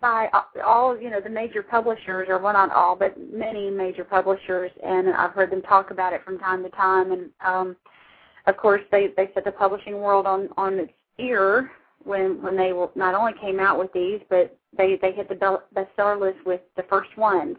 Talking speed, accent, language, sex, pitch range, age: 200 wpm, American, English, female, 190-220 Hz, 40-59